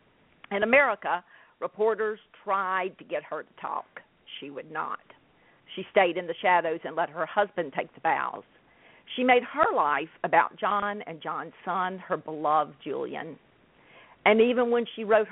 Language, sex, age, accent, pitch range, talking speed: English, female, 50-69, American, 170-225 Hz, 160 wpm